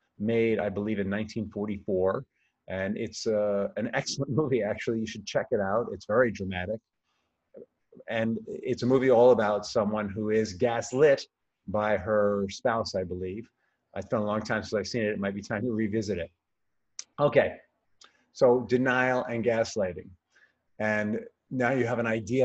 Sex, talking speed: male, 165 wpm